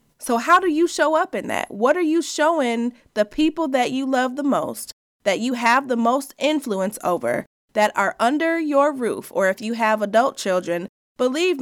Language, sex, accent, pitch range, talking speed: English, female, American, 200-270 Hz, 195 wpm